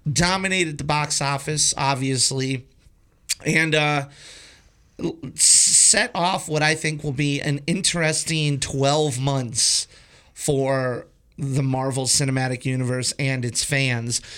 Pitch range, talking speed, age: 135-165 Hz, 110 wpm, 30-49